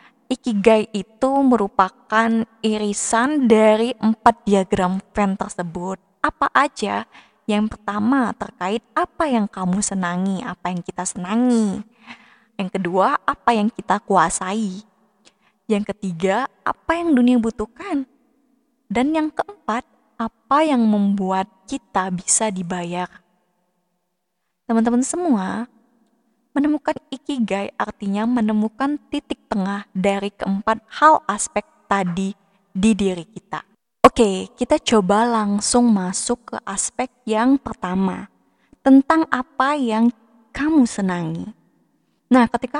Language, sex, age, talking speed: Indonesian, female, 20-39, 105 wpm